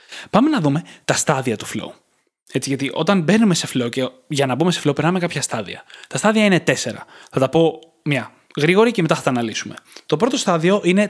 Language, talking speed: Greek, 210 wpm